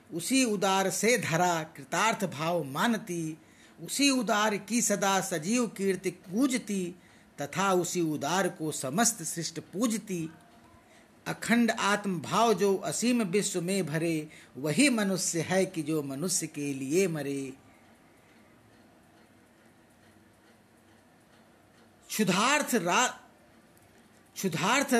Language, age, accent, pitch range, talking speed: Hindi, 50-69, native, 165-225 Hz, 95 wpm